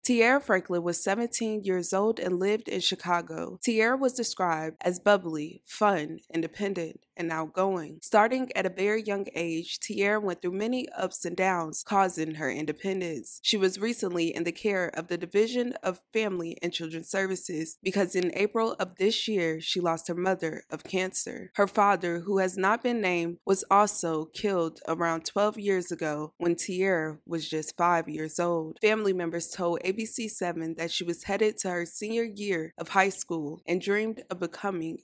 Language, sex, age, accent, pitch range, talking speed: English, female, 20-39, American, 170-205 Hz, 175 wpm